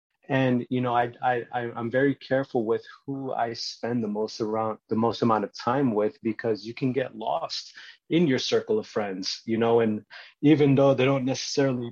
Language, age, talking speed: English, 30-49, 195 wpm